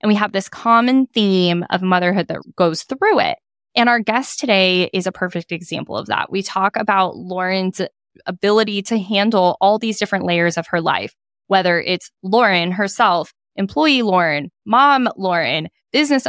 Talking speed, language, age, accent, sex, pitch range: 165 wpm, English, 10-29, American, female, 175-225 Hz